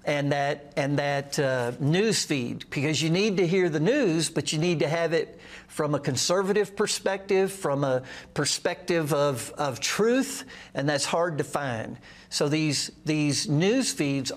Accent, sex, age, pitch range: American, male, 60-79, 145-185 Hz